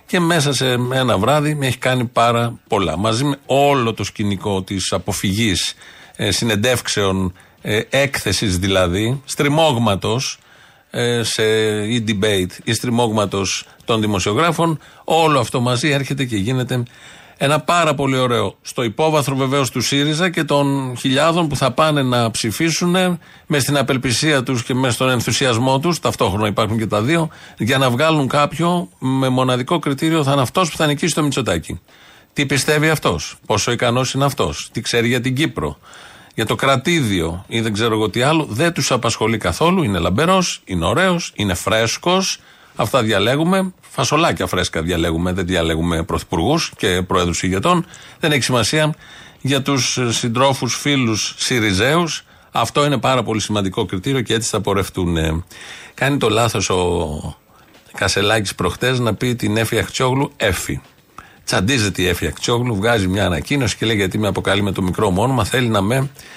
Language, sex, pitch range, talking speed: Greek, male, 105-140 Hz, 155 wpm